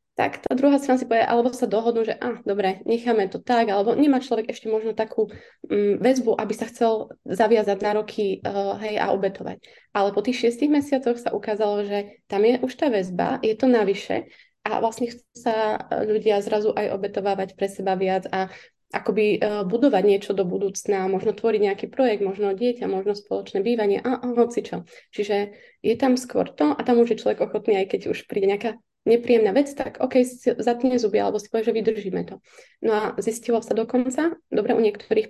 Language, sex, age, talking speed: Slovak, female, 20-39, 200 wpm